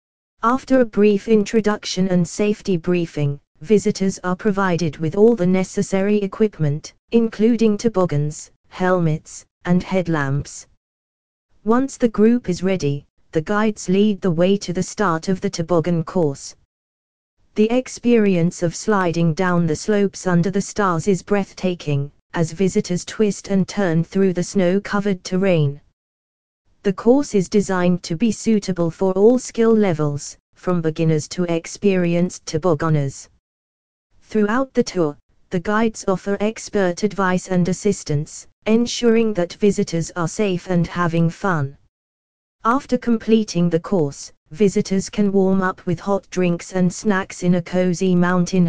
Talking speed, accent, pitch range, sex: 135 wpm, British, 165-205 Hz, female